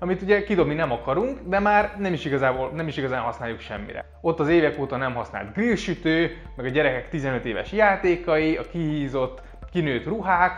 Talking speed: 180 wpm